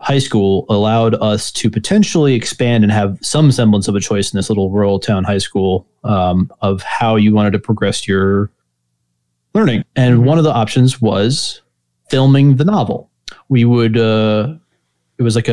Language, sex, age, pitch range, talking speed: English, male, 20-39, 100-130 Hz, 175 wpm